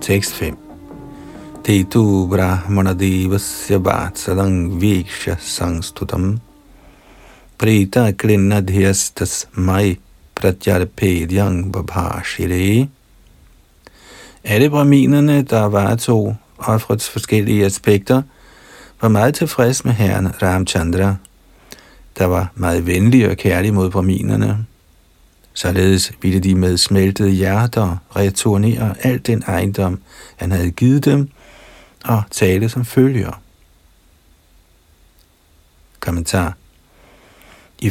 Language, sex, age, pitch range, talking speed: Danish, male, 50-69, 90-115 Hz, 80 wpm